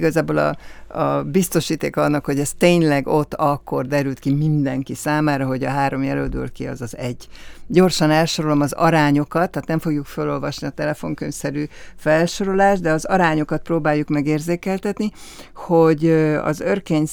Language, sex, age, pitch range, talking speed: Hungarian, female, 60-79, 145-170 Hz, 145 wpm